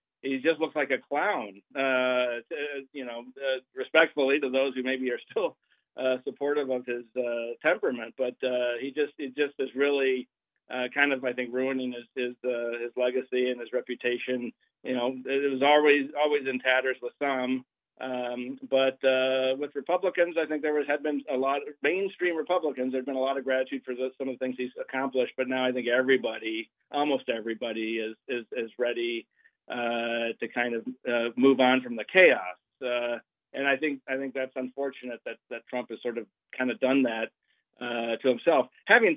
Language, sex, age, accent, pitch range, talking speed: English, male, 40-59, American, 125-140 Hz, 200 wpm